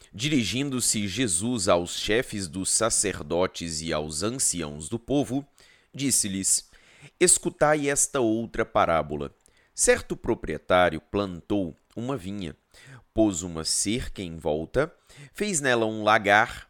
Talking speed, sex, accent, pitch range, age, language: 110 wpm, male, Brazilian, 95-140 Hz, 30-49, Portuguese